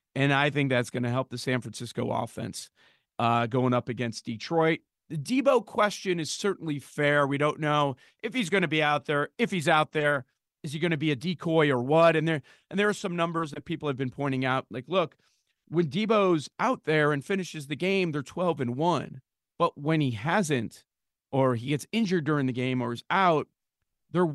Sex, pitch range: male, 130-170 Hz